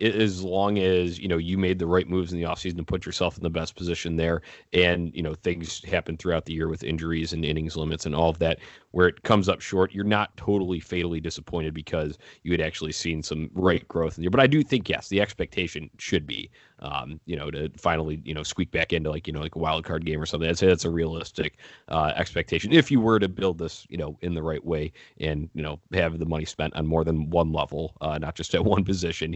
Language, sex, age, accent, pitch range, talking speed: English, male, 30-49, American, 80-95 Hz, 255 wpm